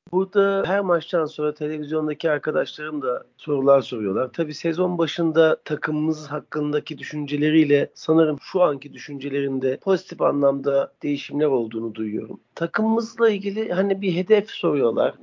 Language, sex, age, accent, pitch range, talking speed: Turkish, male, 40-59, native, 125-185 Hz, 120 wpm